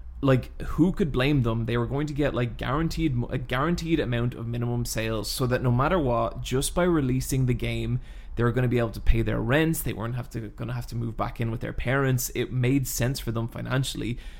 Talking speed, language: 240 wpm, English